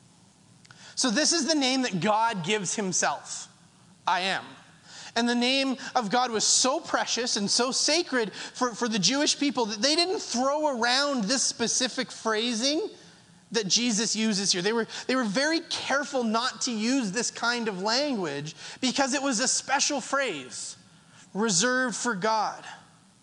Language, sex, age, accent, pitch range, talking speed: English, male, 30-49, American, 220-285 Hz, 155 wpm